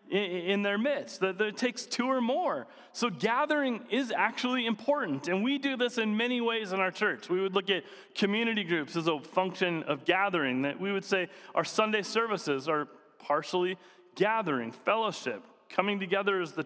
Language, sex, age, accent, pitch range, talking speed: English, male, 30-49, American, 180-235 Hz, 180 wpm